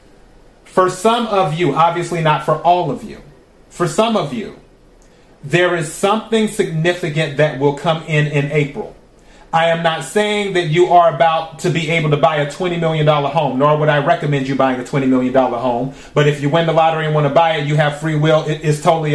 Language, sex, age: English, male, 30-49